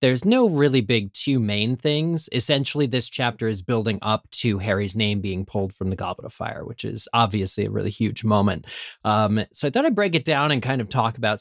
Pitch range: 110-180 Hz